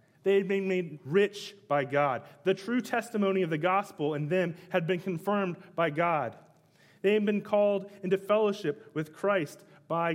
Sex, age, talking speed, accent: male, 30-49, 170 wpm, American